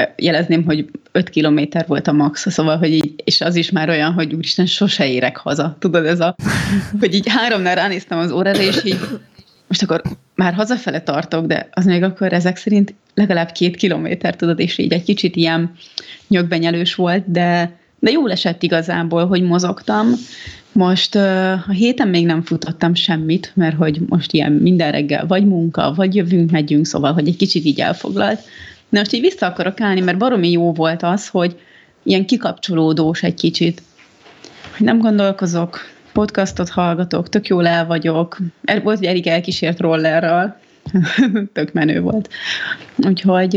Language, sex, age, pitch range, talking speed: Hungarian, female, 30-49, 165-200 Hz, 160 wpm